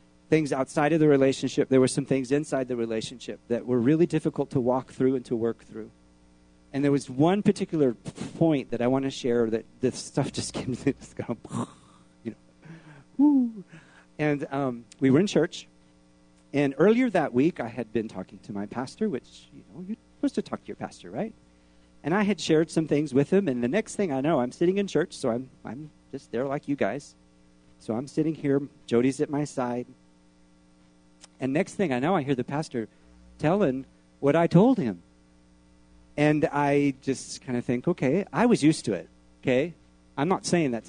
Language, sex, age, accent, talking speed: English, male, 40-59, American, 200 wpm